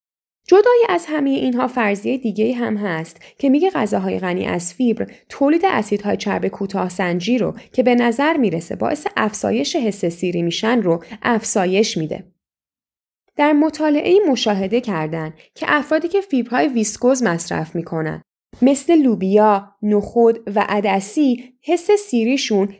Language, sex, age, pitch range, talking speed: English, female, 10-29, 195-295 Hz, 135 wpm